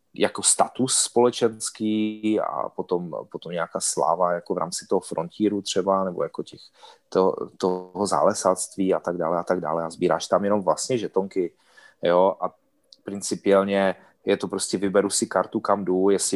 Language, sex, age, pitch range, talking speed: Czech, male, 30-49, 90-110 Hz, 160 wpm